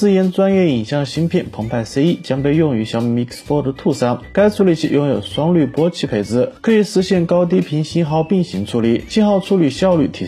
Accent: native